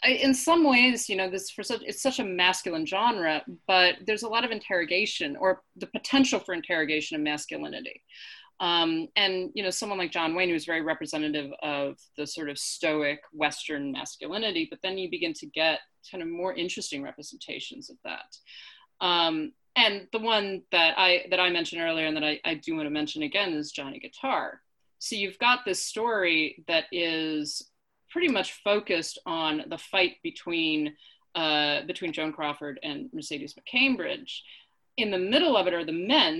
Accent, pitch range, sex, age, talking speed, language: American, 165-255 Hz, female, 30-49, 180 wpm, English